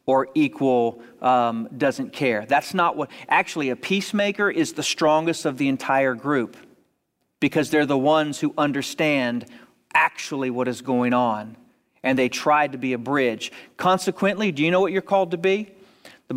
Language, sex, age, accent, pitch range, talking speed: English, male, 40-59, American, 135-195 Hz, 170 wpm